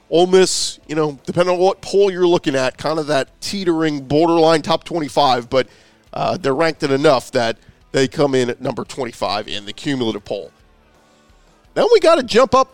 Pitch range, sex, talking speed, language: 145-195 Hz, male, 195 wpm, English